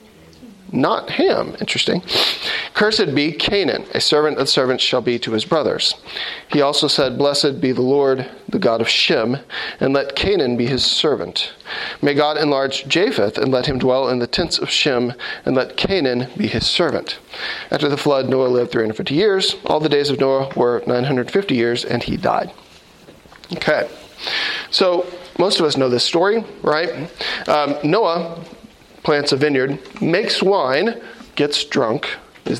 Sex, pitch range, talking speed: male, 130-170 Hz, 160 wpm